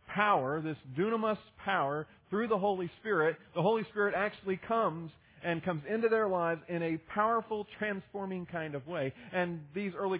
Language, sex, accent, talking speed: English, male, American, 165 wpm